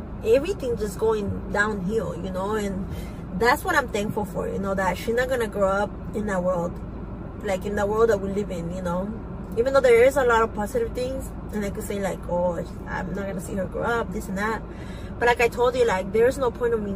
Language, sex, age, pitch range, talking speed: English, female, 20-39, 200-245 Hz, 245 wpm